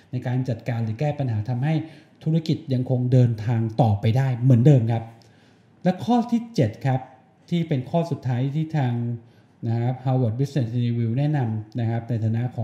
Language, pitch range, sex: Thai, 120-145 Hz, male